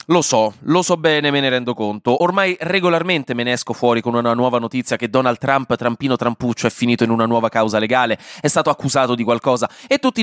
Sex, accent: male, native